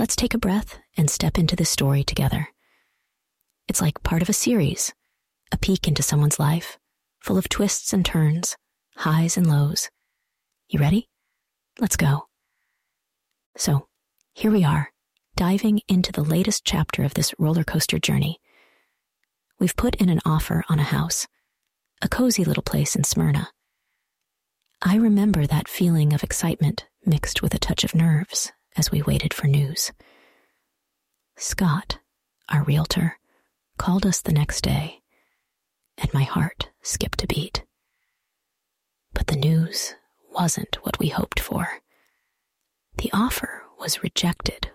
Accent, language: American, English